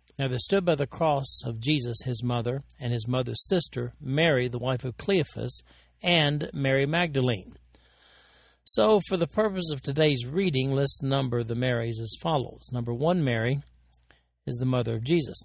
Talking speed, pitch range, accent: 170 wpm, 120-150 Hz, American